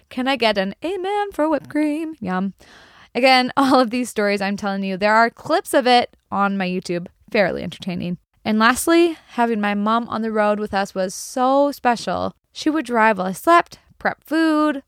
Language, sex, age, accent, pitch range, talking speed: English, female, 20-39, American, 200-280 Hz, 195 wpm